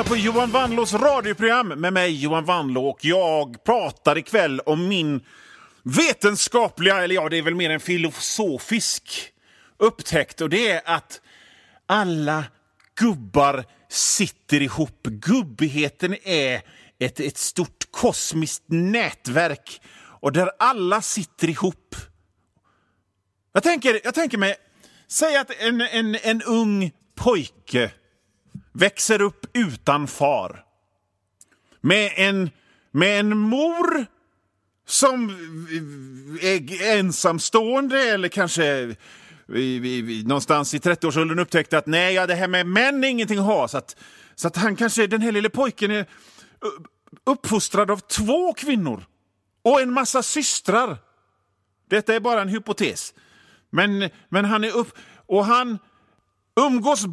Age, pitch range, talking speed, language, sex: 40-59, 150-225 Hz, 120 wpm, Swedish, male